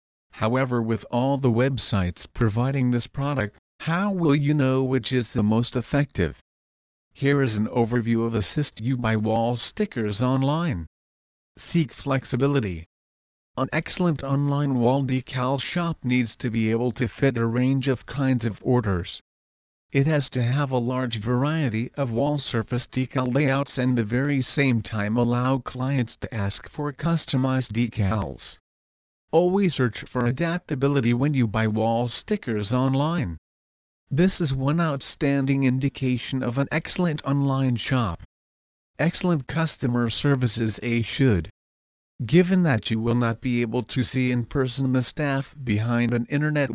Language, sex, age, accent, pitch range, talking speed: English, male, 50-69, American, 110-140 Hz, 145 wpm